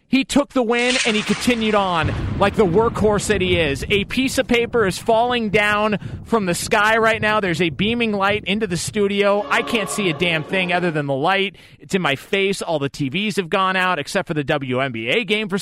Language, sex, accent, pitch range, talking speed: English, male, American, 155-205 Hz, 225 wpm